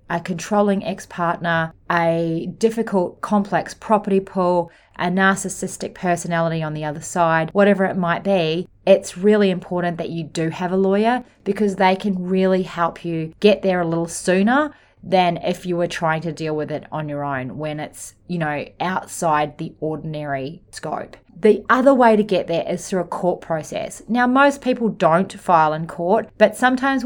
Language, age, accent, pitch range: English, 30-49, Australian, 160-200 Hz